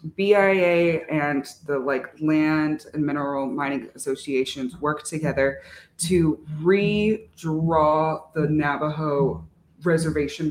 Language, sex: French, female